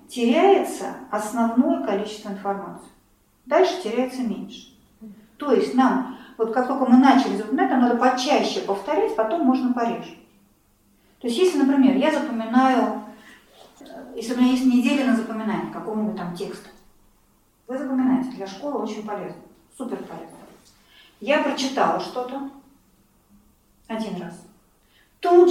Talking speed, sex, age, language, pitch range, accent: 125 wpm, female, 40-59, Russian, 205-270 Hz, native